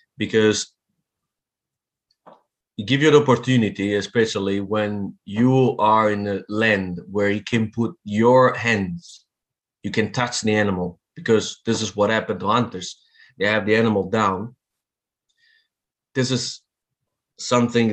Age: 30-49